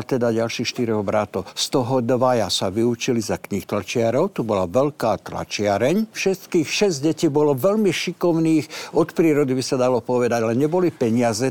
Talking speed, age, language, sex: 160 wpm, 60-79, Slovak, male